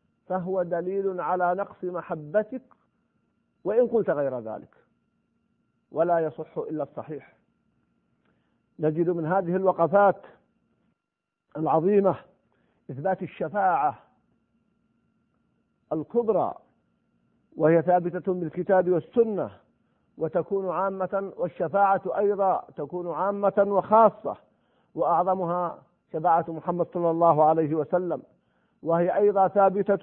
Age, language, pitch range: 50-69, Arabic, 155-190 Hz